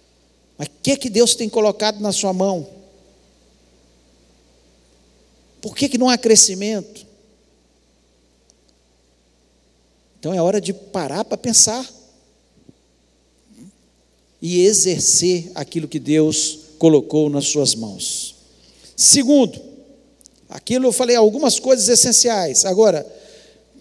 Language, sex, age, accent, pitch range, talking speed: Portuguese, male, 50-69, Brazilian, 175-250 Hz, 100 wpm